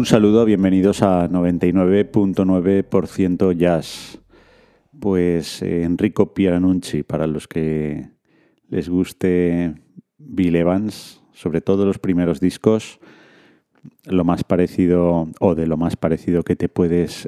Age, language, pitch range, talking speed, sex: 30-49, Spanish, 85-105 Hz, 115 wpm, male